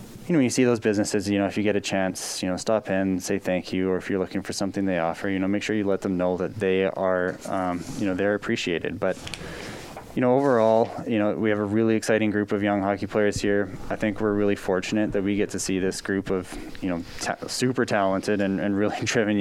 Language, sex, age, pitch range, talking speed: English, male, 20-39, 95-100 Hz, 260 wpm